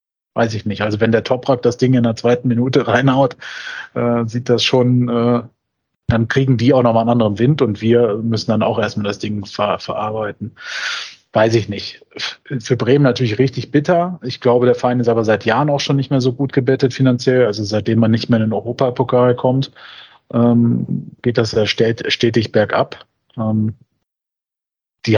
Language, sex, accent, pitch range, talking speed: German, male, German, 115-135 Hz, 195 wpm